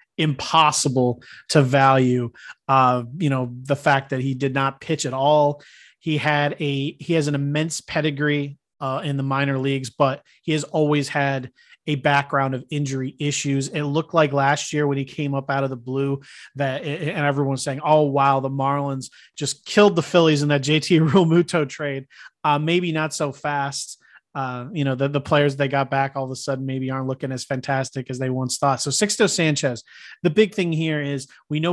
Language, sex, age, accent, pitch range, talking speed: English, male, 30-49, American, 135-155 Hz, 200 wpm